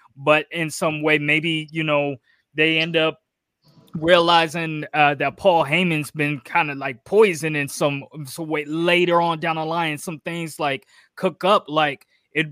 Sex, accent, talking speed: male, American, 170 wpm